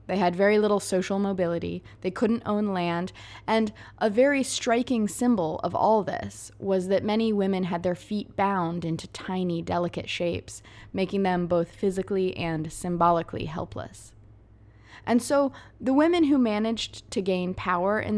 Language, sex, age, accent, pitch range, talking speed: English, female, 20-39, American, 135-200 Hz, 155 wpm